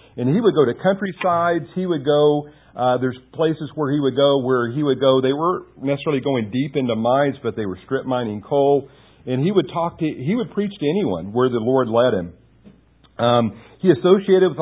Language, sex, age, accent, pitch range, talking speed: English, male, 50-69, American, 115-145 Hz, 215 wpm